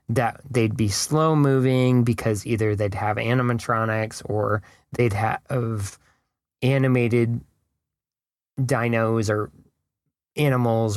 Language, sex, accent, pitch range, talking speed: English, male, American, 110-140 Hz, 90 wpm